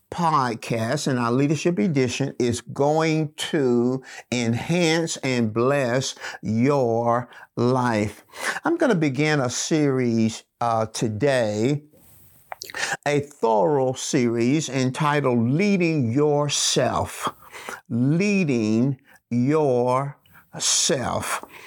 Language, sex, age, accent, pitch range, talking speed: English, male, 50-69, American, 125-165 Hz, 85 wpm